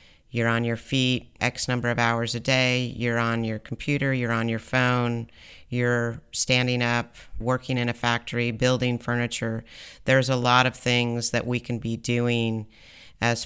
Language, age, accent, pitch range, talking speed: English, 40-59, American, 115-125 Hz, 170 wpm